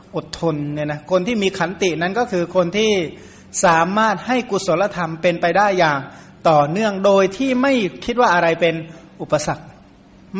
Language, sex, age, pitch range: Thai, male, 60-79, 160-195 Hz